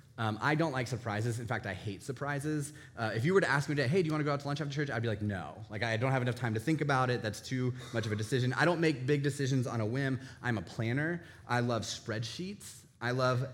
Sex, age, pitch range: male, 20-39, 115-145 Hz